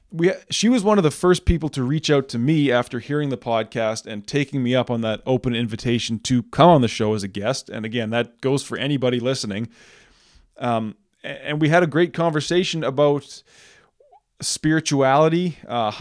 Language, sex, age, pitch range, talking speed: English, male, 20-39, 125-150 Hz, 185 wpm